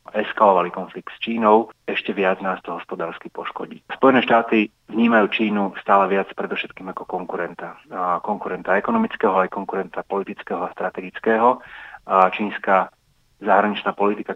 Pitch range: 95-110 Hz